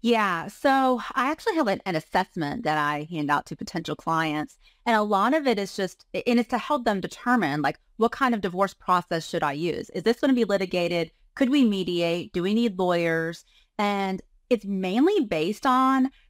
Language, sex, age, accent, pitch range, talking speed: English, female, 30-49, American, 170-230 Hz, 205 wpm